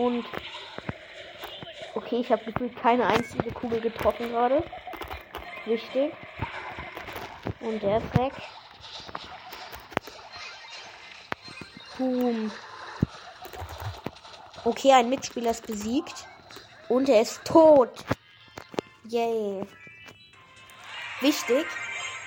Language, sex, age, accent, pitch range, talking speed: German, female, 20-39, German, 220-275 Hz, 75 wpm